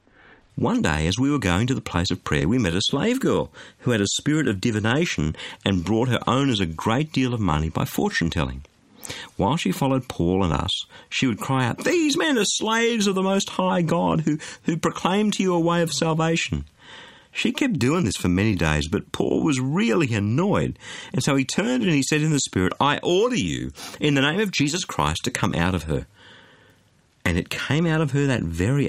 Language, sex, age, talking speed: English, male, 50-69, 220 wpm